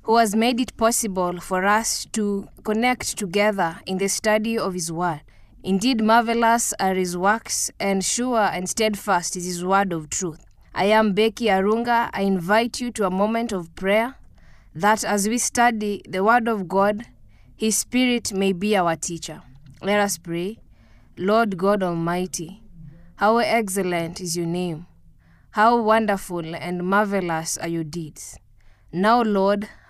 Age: 20-39